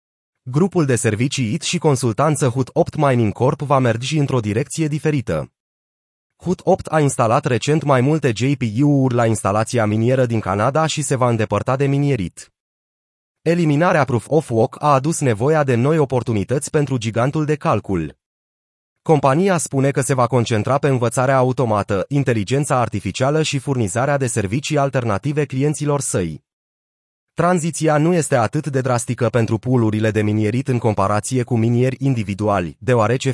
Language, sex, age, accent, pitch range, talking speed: Romanian, male, 30-49, native, 115-145 Hz, 145 wpm